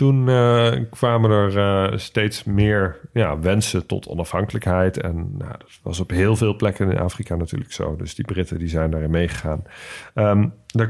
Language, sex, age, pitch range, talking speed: Dutch, male, 40-59, 90-115 Hz, 155 wpm